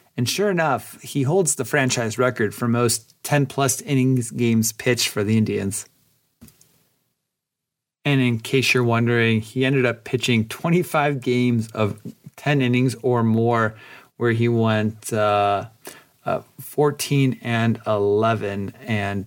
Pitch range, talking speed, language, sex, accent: 105-125 Hz, 130 wpm, English, male, American